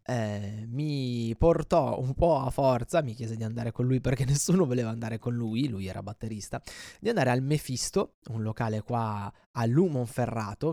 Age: 20-39